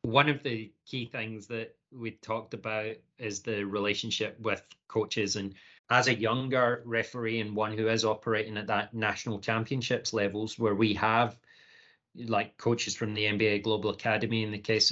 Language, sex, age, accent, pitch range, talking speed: English, male, 30-49, British, 105-115 Hz, 170 wpm